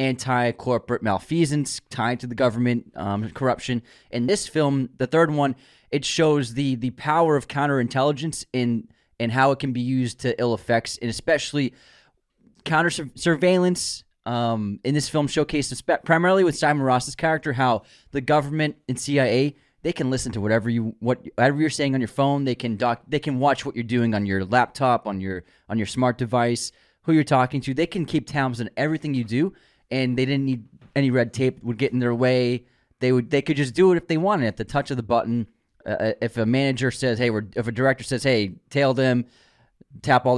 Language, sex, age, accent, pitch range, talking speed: English, male, 20-39, American, 120-145 Hz, 205 wpm